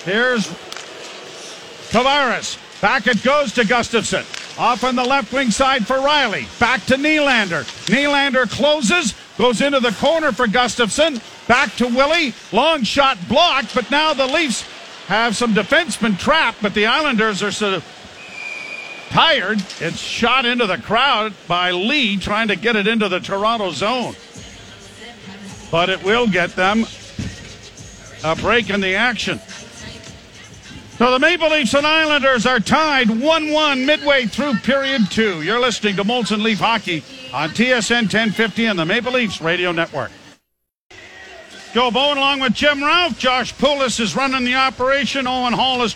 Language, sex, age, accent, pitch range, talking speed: English, male, 50-69, American, 195-260 Hz, 150 wpm